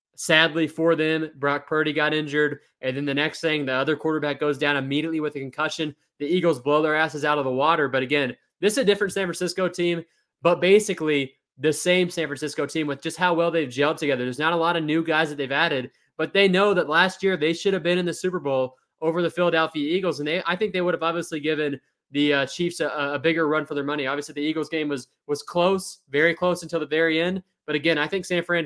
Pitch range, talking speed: 145-170 Hz, 250 wpm